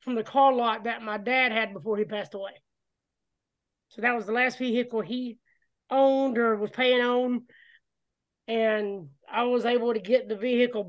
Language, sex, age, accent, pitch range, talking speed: English, male, 20-39, American, 215-255 Hz, 175 wpm